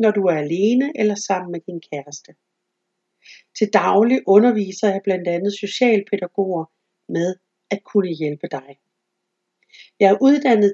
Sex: female